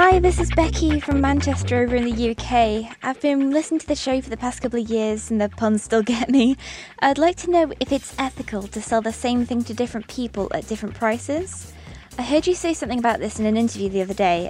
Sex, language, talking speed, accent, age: female, English, 245 wpm, British, 20-39